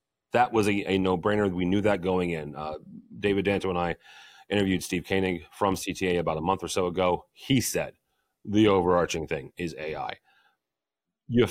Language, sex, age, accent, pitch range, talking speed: English, male, 40-59, American, 85-105 Hz, 180 wpm